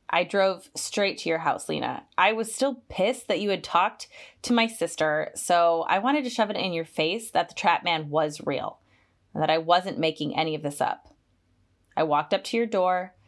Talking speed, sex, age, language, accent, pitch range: 215 wpm, female, 20-39, English, American, 150-200 Hz